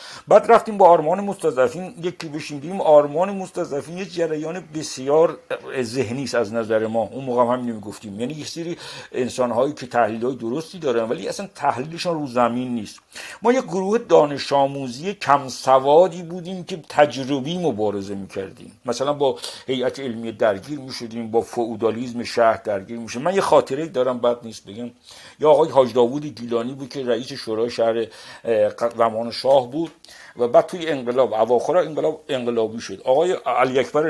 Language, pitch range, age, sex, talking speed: Persian, 120-165 Hz, 50-69, male, 150 wpm